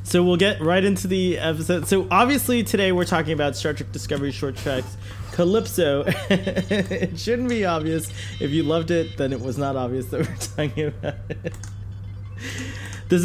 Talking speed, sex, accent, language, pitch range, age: 170 wpm, male, American, English, 100-135 Hz, 20-39